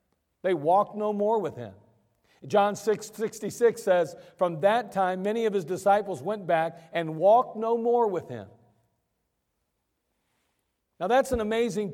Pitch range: 165-220 Hz